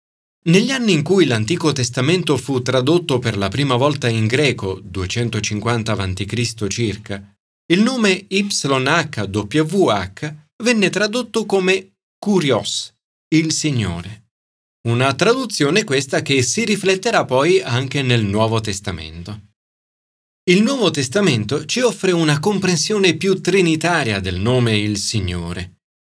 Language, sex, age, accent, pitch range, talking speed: Italian, male, 40-59, native, 110-175 Hz, 115 wpm